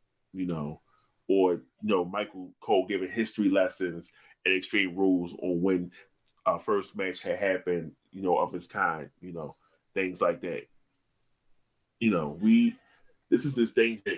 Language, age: English, 30-49